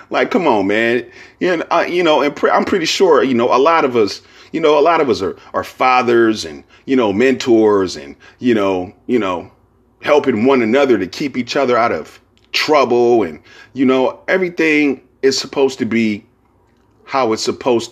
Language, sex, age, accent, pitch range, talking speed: English, male, 30-49, American, 105-135 Hz, 195 wpm